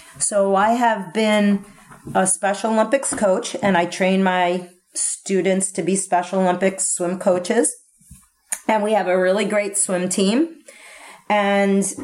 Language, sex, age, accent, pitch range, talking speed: English, female, 40-59, American, 185-225 Hz, 140 wpm